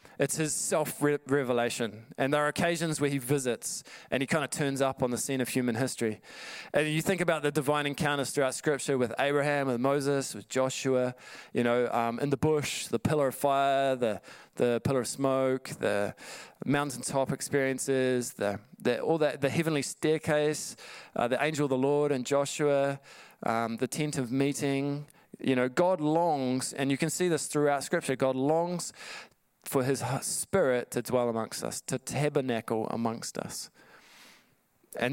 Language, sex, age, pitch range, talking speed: English, male, 20-39, 125-150 Hz, 170 wpm